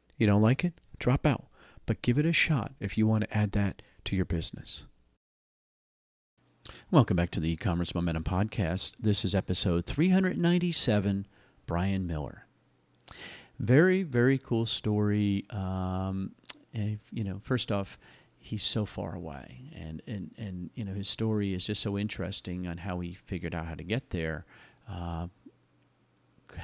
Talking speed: 160 wpm